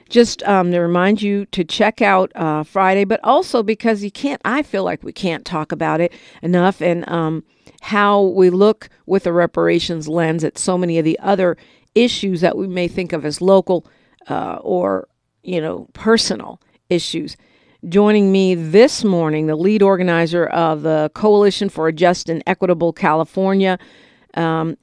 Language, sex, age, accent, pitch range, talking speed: English, female, 50-69, American, 170-200 Hz, 170 wpm